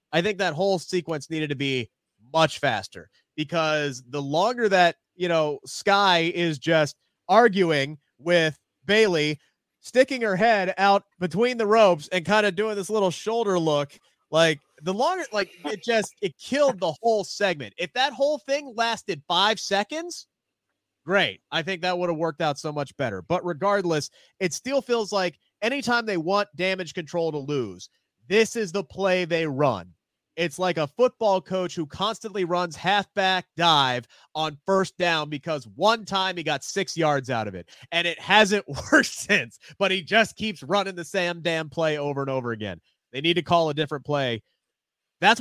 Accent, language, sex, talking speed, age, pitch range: American, English, male, 175 wpm, 30-49, 150-200 Hz